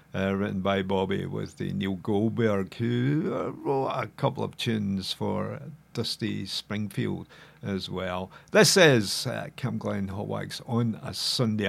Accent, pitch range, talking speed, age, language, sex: British, 100-135 Hz, 155 wpm, 50-69, English, male